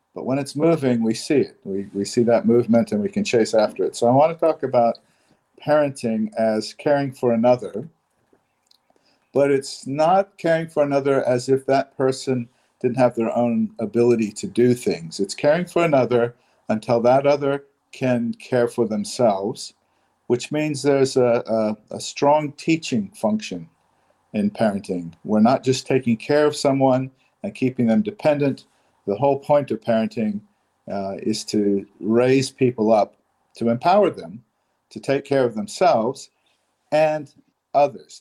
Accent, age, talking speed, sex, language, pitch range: American, 50-69, 155 wpm, male, English, 110-140 Hz